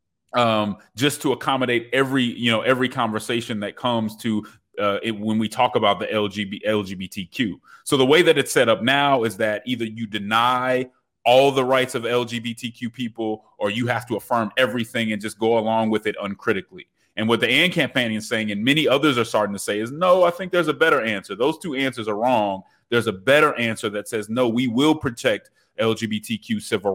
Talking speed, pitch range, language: 205 wpm, 110-130 Hz, English